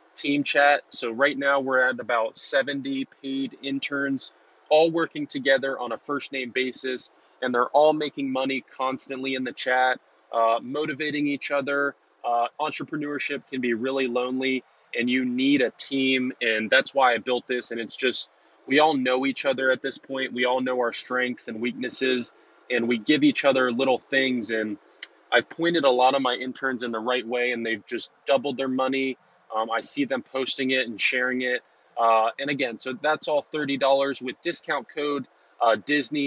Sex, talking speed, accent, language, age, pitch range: male, 185 wpm, American, English, 20-39, 125-140 Hz